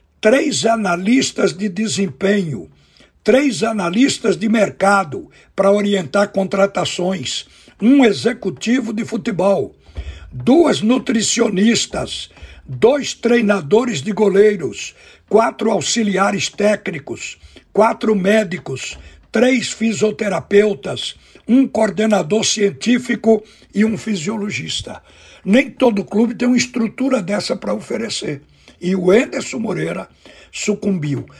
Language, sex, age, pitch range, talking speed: Portuguese, male, 60-79, 190-225 Hz, 90 wpm